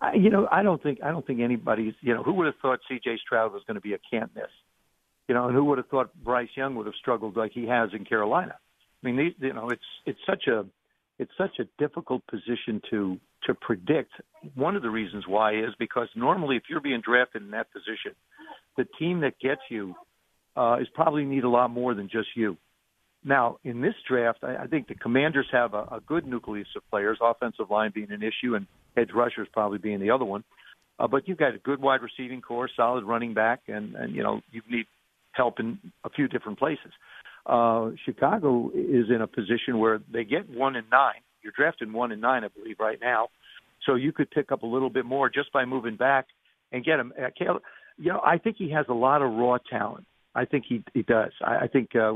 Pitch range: 110-135 Hz